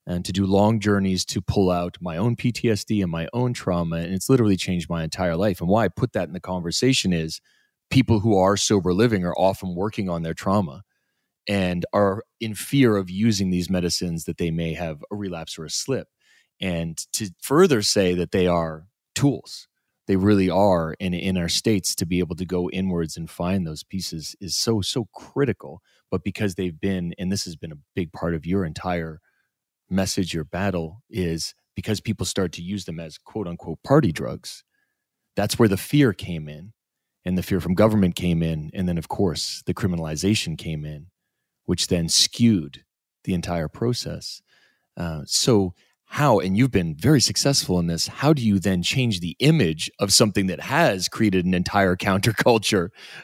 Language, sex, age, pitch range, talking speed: English, male, 30-49, 85-105 Hz, 190 wpm